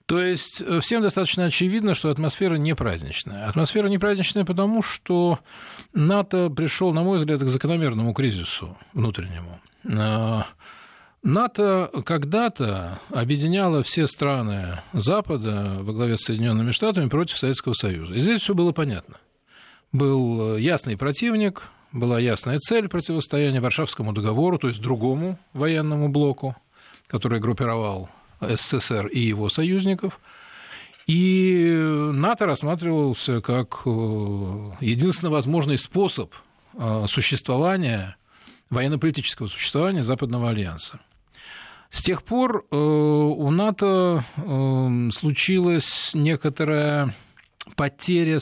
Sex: male